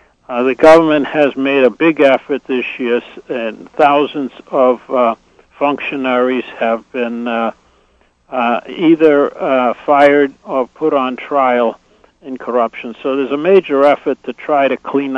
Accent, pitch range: American, 120-140 Hz